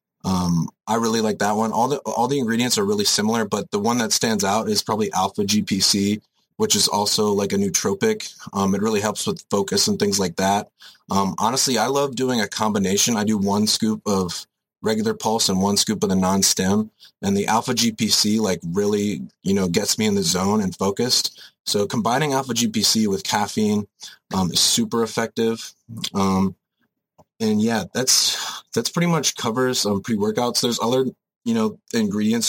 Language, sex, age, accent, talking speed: English, male, 30-49, American, 185 wpm